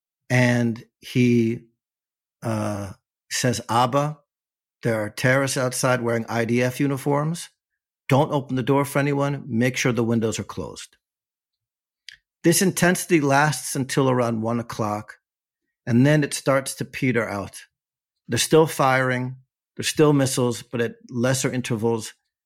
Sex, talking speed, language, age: male, 130 wpm, English, 50-69